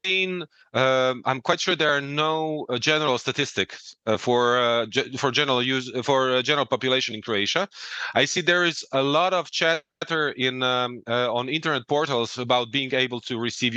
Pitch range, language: 120-150 Hz, English